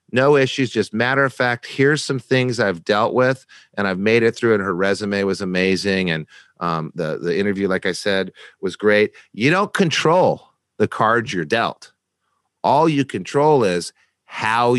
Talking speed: 180 wpm